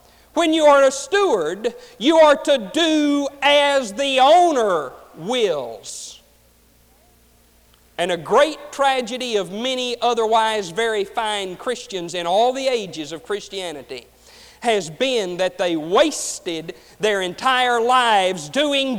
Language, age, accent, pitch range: English, 50-69, American, 170-265 Hz